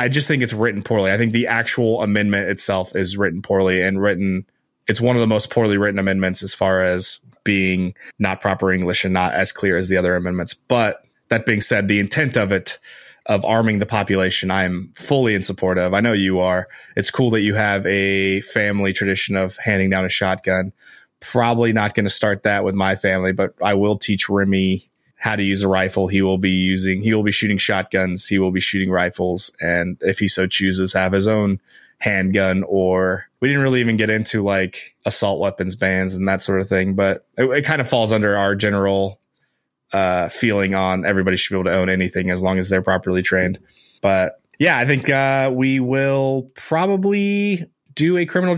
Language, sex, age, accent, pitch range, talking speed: English, male, 20-39, American, 95-110 Hz, 210 wpm